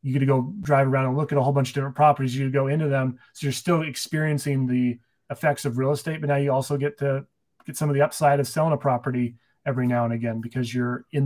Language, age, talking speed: English, 30-49, 265 wpm